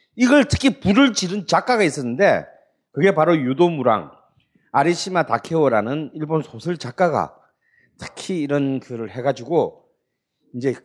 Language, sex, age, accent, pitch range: Korean, male, 40-59, native, 140-210 Hz